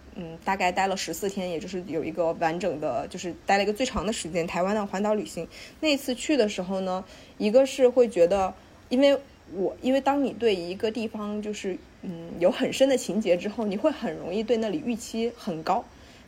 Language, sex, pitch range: Chinese, female, 185-240 Hz